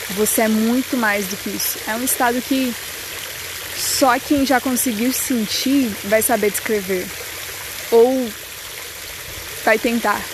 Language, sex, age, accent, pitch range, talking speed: Portuguese, female, 20-39, Brazilian, 220-265 Hz, 130 wpm